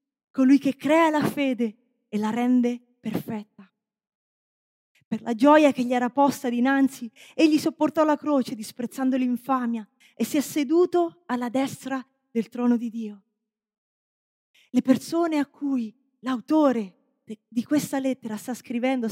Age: 30-49